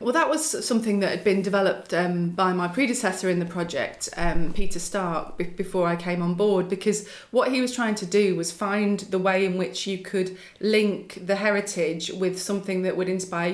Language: English